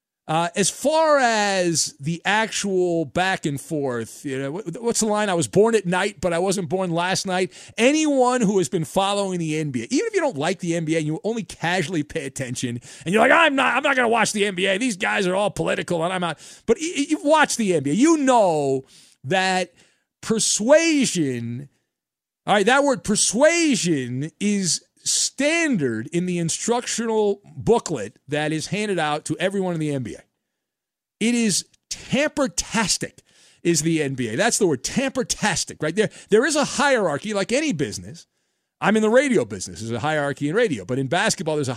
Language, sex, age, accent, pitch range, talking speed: English, male, 40-59, American, 155-230 Hz, 185 wpm